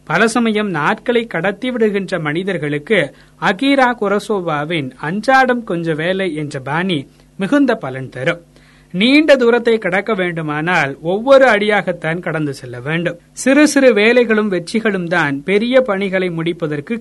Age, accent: 30-49, native